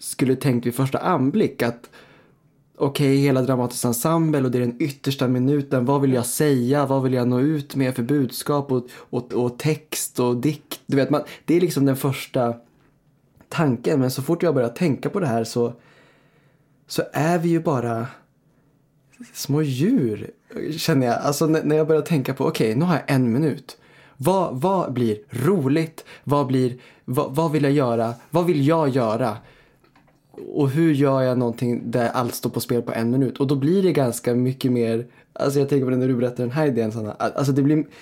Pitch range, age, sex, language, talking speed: 125-150 Hz, 20-39, male, Swedish, 200 wpm